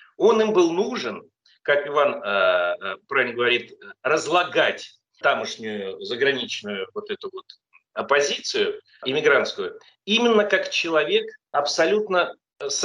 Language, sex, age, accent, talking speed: Russian, male, 40-59, native, 85 wpm